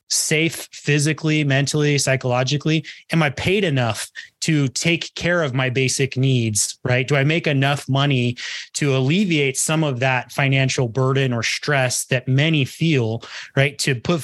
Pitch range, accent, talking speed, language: 130-155 Hz, American, 150 wpm, English